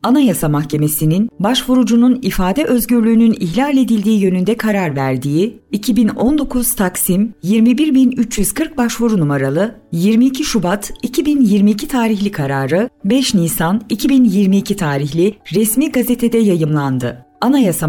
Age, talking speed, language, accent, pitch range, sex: 50-69, 95 wpm, Turkish, native, 185-260 Hz, female